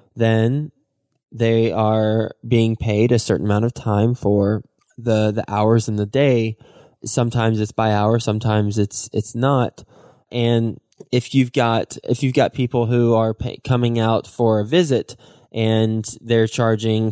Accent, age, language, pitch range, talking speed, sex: American, 10-29, English, 110-125 Hz, 155 wpm, male